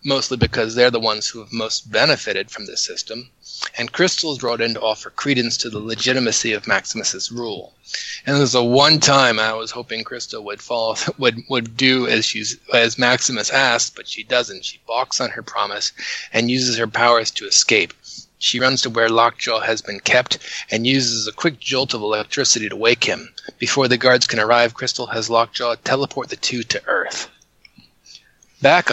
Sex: male